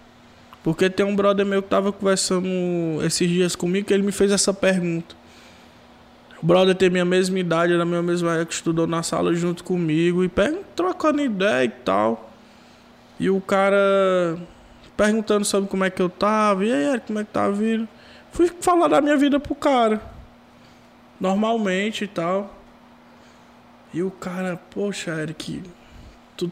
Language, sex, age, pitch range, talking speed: Portuguese, male, 20-39, 175-225 Hz, 165 wpm